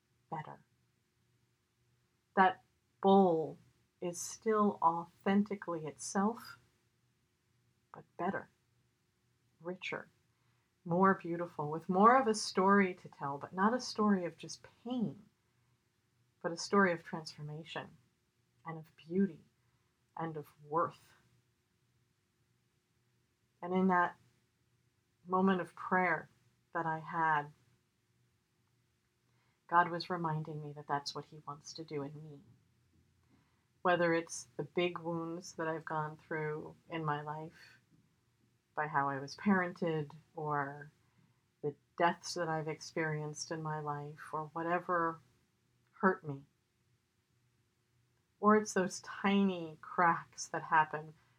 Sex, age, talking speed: female, 40-59, 110 wpm